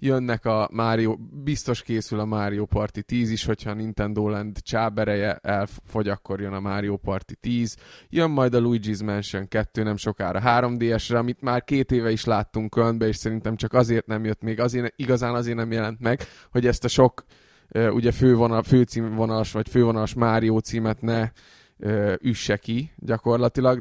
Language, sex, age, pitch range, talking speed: Hungarian, male, 20-39, 110-125 Hz, 160 wpm